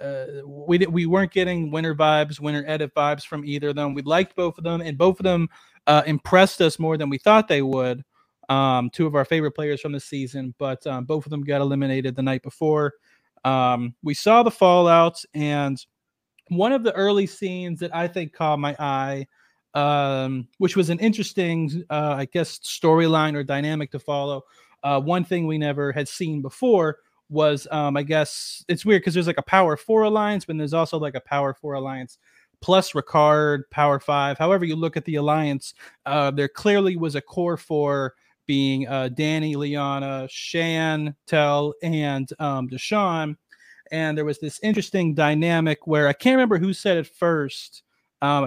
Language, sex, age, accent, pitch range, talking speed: English, male, 30-49, American, 140-170 Hz, 185 wpm